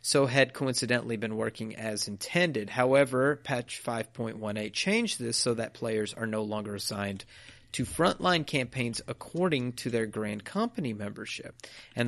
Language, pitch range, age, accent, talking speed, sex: English, 115-140 Hz, 30-49, American, 145 wpm, male